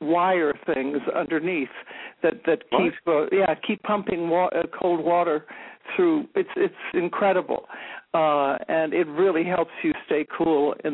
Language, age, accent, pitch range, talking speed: English, 60-79, American, 160-210 Hz, 145 wpm